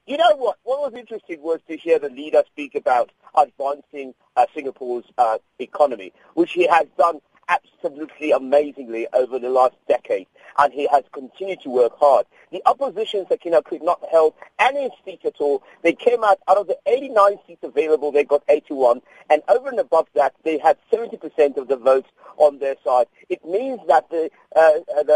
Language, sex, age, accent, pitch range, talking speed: English, male, 50-69, British, 140-205 Hz, 180 wpm